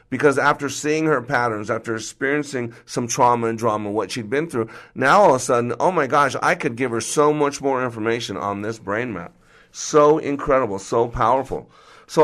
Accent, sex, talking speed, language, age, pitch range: American, male, 195 wpm, English, 50-69, 110-140 Hz